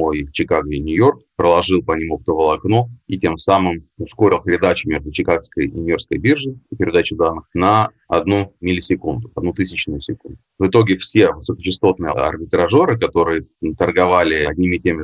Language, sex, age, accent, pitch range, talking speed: Russian, male, 30-49, native, 85-115 Hz, 150 wpm